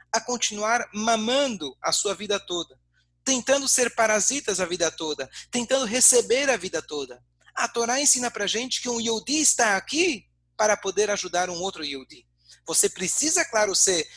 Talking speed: 160 wpm